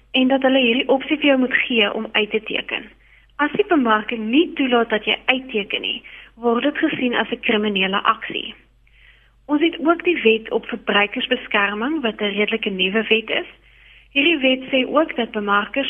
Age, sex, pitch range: 30-49, female, 215-270 Hz